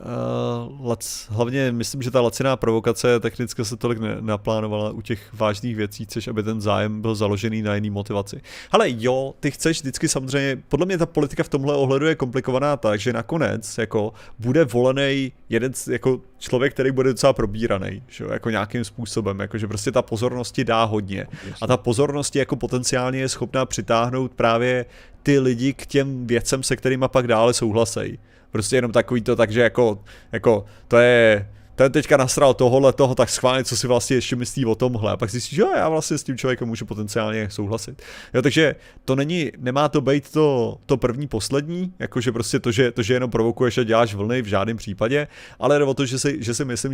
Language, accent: Czech, native